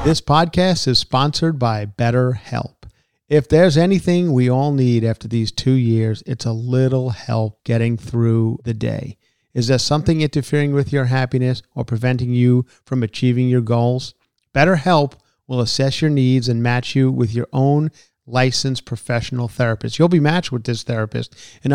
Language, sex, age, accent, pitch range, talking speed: English, male, 40-59, American, 120-155 Hz, 165 wpm